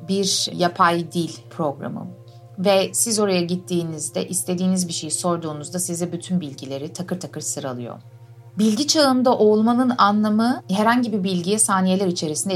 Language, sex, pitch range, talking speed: Turkish, female, 165-220 Hz, 130 wpm